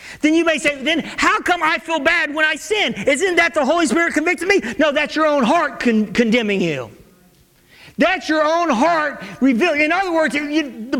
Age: 40-59